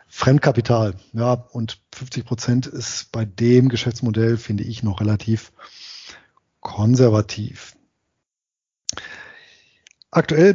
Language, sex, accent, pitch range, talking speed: German, male, German, 115-135 Hz, 85 wpm